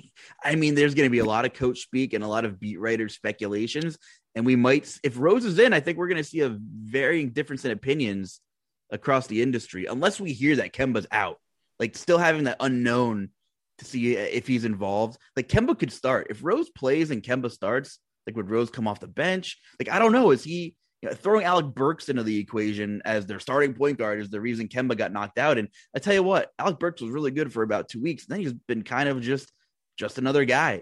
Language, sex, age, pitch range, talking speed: English, male, 20-39, 110-135 Hz, 230 wpm